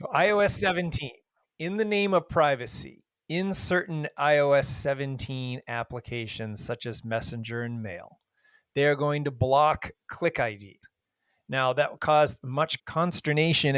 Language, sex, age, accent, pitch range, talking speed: English, male, 30-49, American, 125-160 Hz, 125 wpm